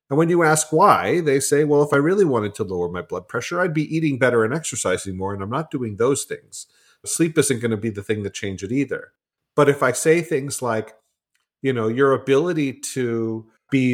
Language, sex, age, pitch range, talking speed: English, male, 40-59, 120-155 Hz, 230 wpm